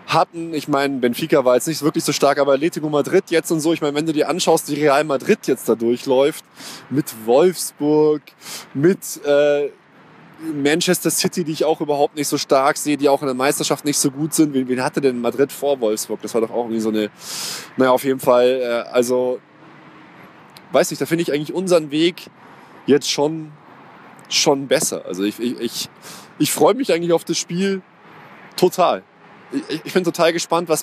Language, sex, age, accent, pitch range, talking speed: German, male, 20-39, German, 140-165 Hz, 195 wpm